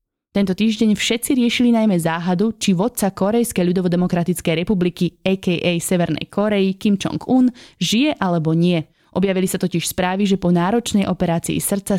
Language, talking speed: Slovak, 145 wpm